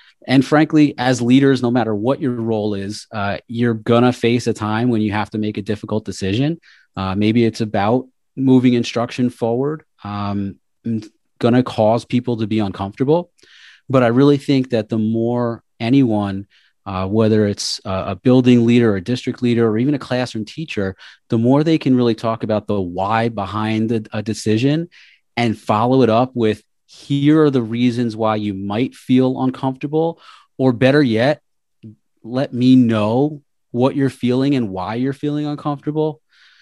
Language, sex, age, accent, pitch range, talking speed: English, male, 30-49, American, 110-130 Hz, 170 wpm